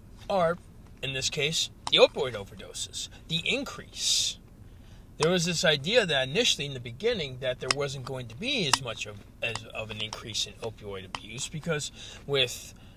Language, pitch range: English, 110-155 Hz